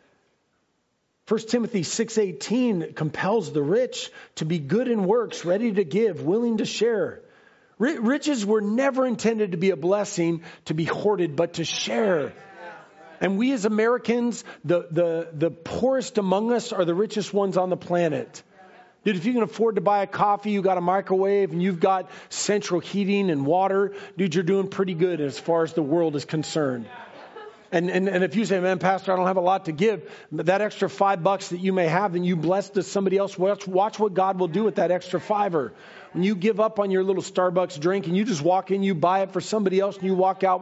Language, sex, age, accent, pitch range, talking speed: English, male, 40-59, American, 170-210 Hz, 215 wpm